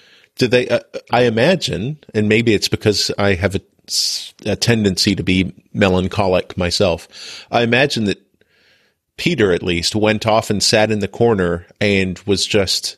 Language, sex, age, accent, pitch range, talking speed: English, male, 40-59, American, 95-115 Hz, 155 wpm